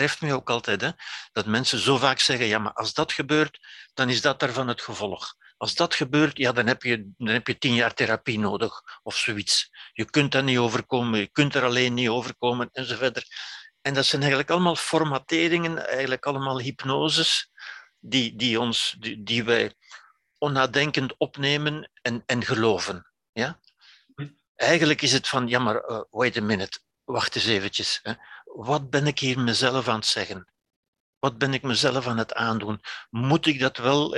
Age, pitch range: 60-79, 120-150 Hz